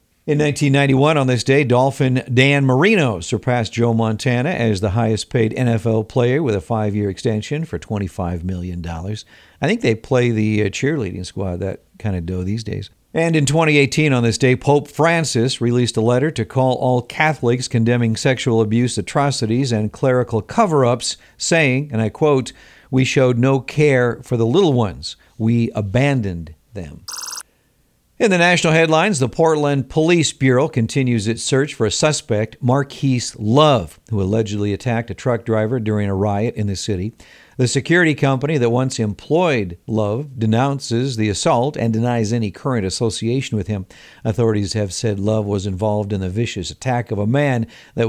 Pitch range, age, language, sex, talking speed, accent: 105-135 Hz, 50-69, English, male, 165 wpm, American